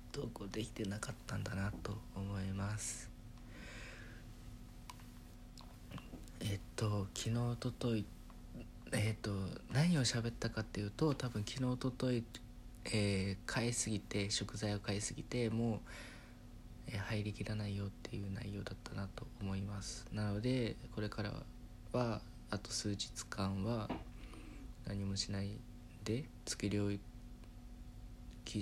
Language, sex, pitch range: Japanese, male, 100-120 Hz